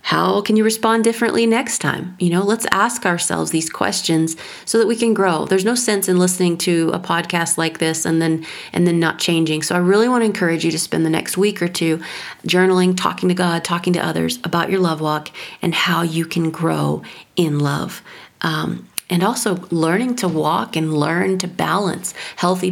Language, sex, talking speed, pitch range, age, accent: English, female, 205 wpm, 165-185 Hz, 40-59, American